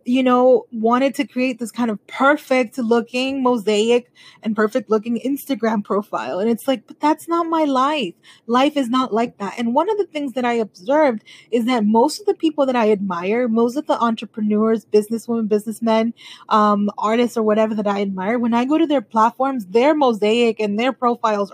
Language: English